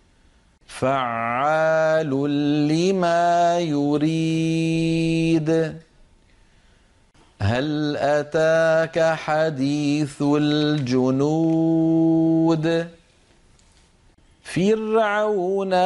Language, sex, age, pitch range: Arabic, male, 40-59, 145-175 Hz